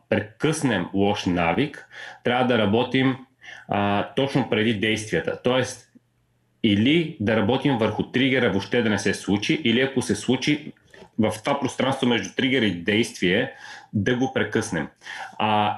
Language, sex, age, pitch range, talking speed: Bulgarian, male, 30-49, 100-125 Hz, 135 wpm